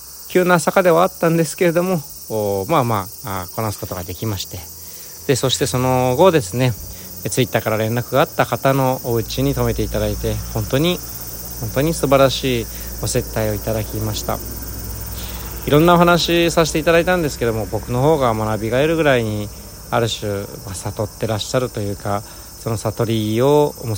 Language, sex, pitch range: Japanese, male, 100-130 Hz